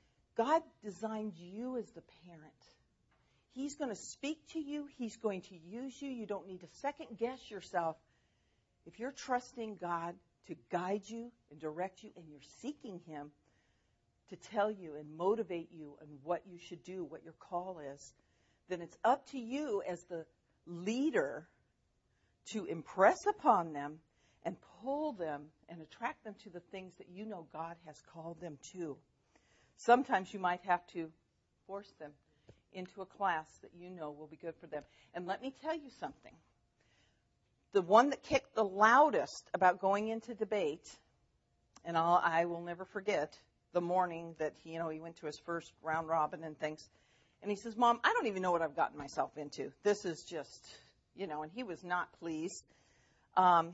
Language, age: English, 50-69